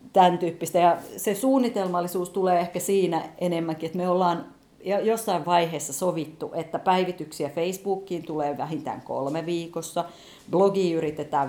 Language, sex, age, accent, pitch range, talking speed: Finnish, female, 40-59, native, 145-180 Hz, 125 wpm